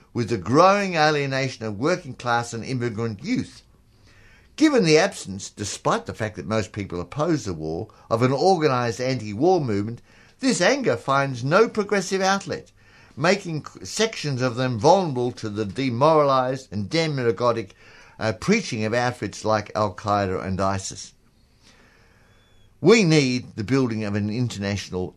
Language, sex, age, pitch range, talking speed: English, male, 60-79, 105-155 Hz, 135 wpm